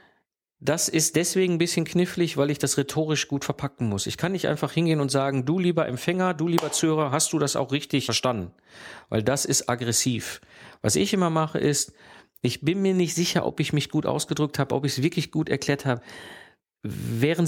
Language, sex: German, male